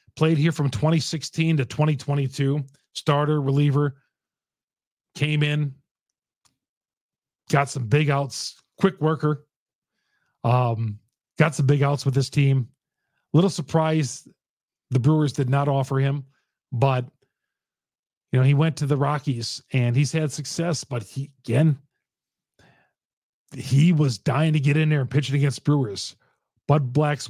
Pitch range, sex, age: 125-150 Hz, male, 40-59